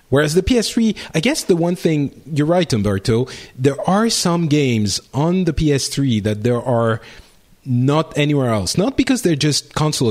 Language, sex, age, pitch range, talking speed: English, male, 40-59, 100-145 Hz, 170 wpm